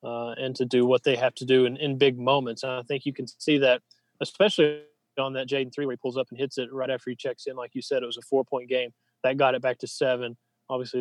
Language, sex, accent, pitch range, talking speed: English, male, American, 125-140 Hz, 280 wpm